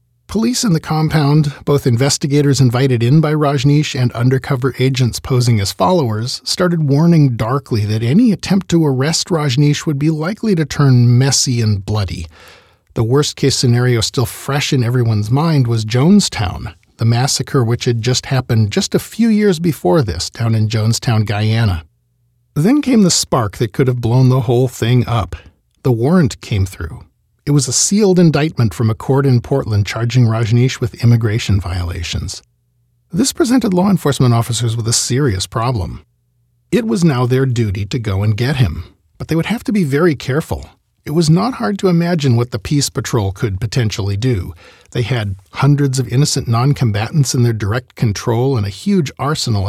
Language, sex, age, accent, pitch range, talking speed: English, male, 40-59, American, 115-155 Hz, 175 wpm